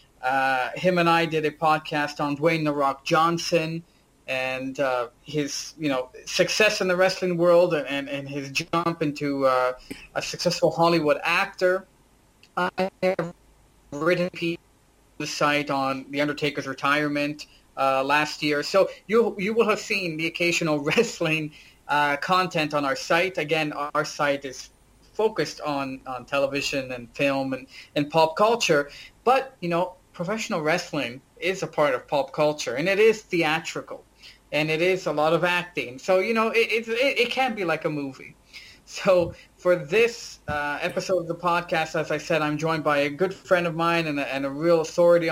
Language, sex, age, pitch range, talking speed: English, male, 30-49, 145-180 Hz, 175 wpm